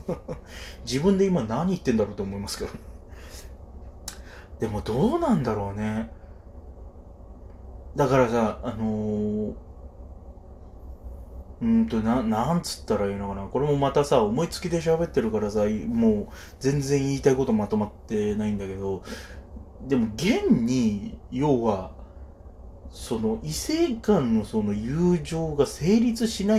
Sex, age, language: male, 20-39, Japanese